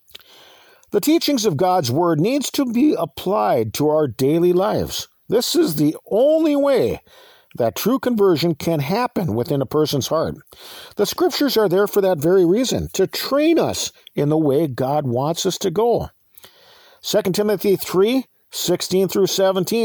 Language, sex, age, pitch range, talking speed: English, male, 50-69, 140-210 Hz, 150 wpm